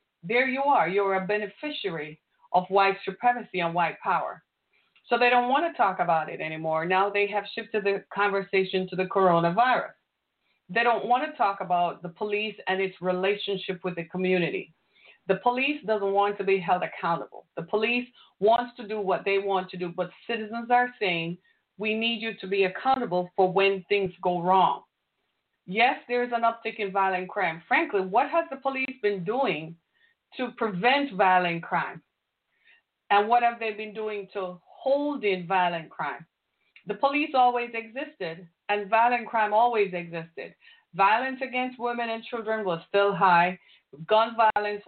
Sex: female